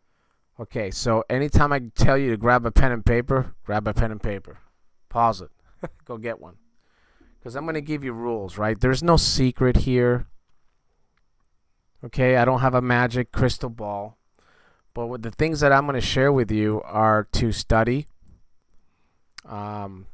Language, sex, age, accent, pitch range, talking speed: English, male, 30-49, American, 100-125 Hz, 170 wpm